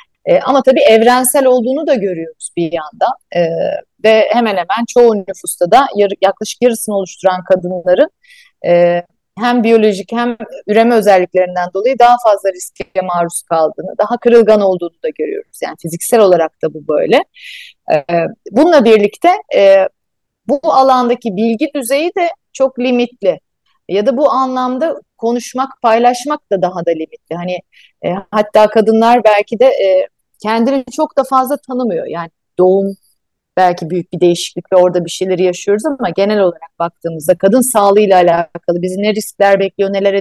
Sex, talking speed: female, 150 wpm